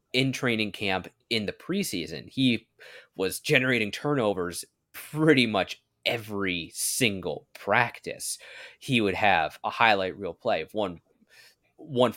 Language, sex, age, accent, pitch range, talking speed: English, male, 30-49, American, 95-135 Hz, 125 wpm